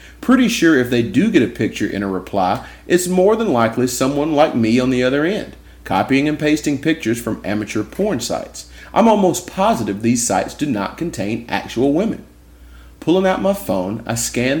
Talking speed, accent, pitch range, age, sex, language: 190 wpm, American, 85-125 Hz, 30-49, male, English